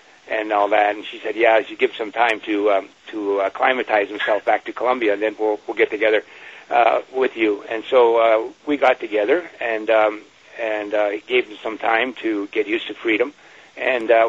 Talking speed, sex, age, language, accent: 205 wpm, male, 60-79, English, American